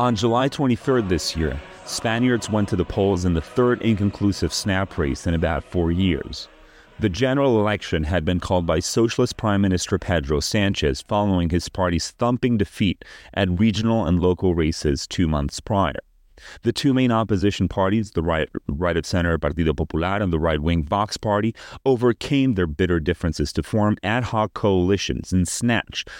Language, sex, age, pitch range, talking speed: English, male, 30-49, 85-115 Hz, 160 wpm